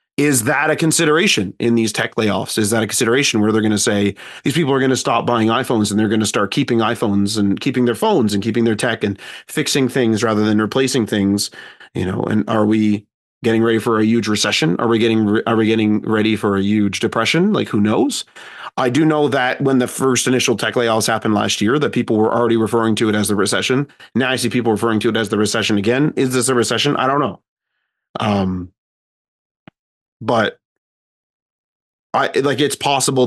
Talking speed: 215 wpm